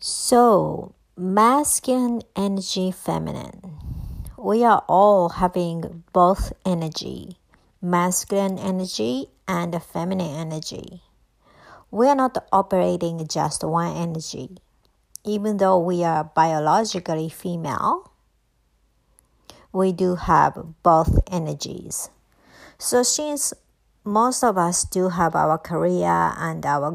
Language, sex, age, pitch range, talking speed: English, male, 60-79, 160-195 Hz, 100 wpm